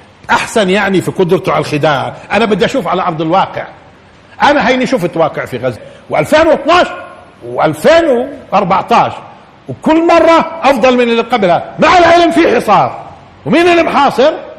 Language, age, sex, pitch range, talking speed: Arabic, 50-69, male, 145-220 Hz, 135 wpm